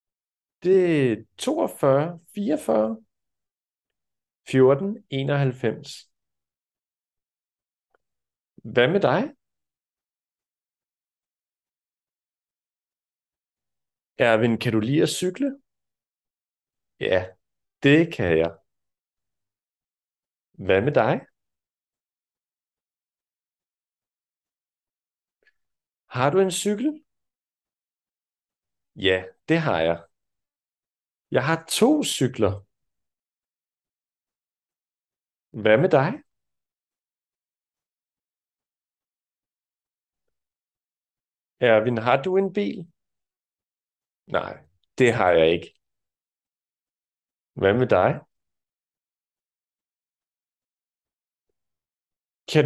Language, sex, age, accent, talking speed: Danish, male, 50-69, native, 60 wpm